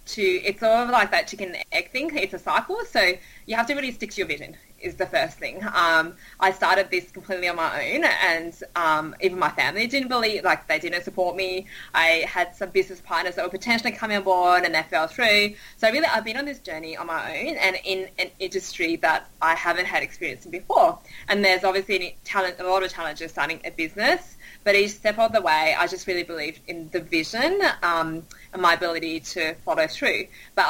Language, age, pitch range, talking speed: English, 20-39, 175-215 Hz, 220 wpm